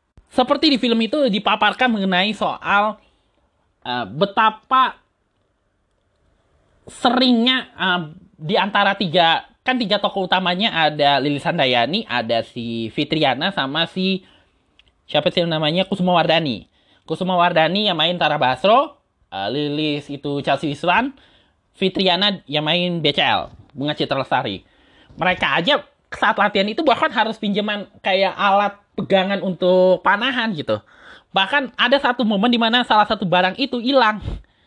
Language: Indonesian